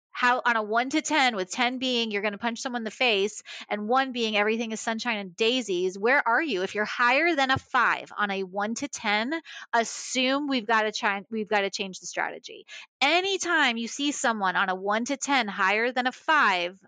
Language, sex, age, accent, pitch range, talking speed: English, female, 30-49, American, 205-265 Hz, 225 wpm